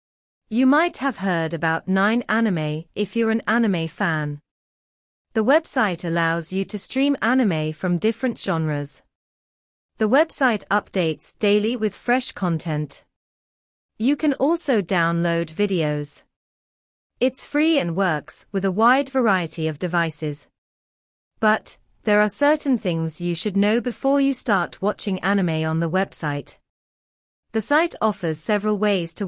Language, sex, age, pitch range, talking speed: English, female, 30-49, 165-235 Hz, 135 wpm